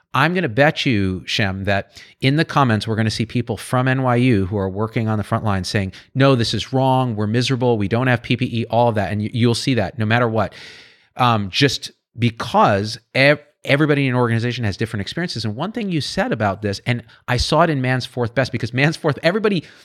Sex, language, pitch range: male, English, 110-145 Hz